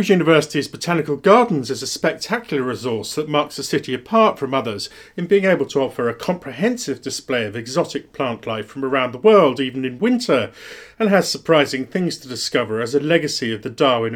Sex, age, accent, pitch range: male, 40-59, British, 130-180 Hz